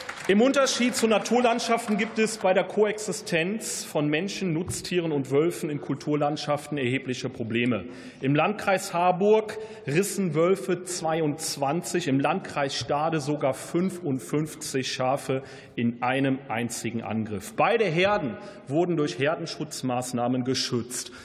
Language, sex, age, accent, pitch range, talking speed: German, male, 40-59, German, 150-195 Hz, 115 wpm